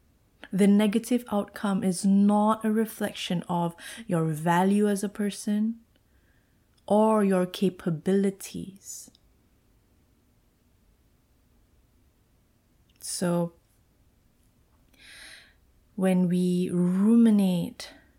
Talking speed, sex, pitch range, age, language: 65 wpm, female, 170-200 Hz, 20-39, English